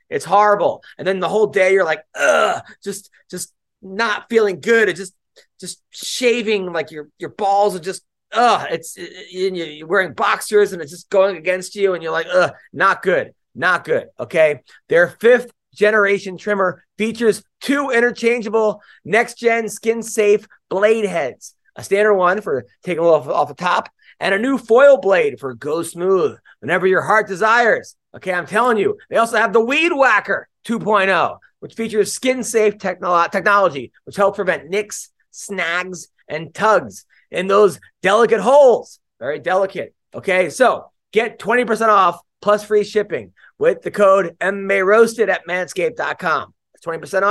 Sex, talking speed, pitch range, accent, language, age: male, 160 wpm, 190-230 Hz, American, English, 30-49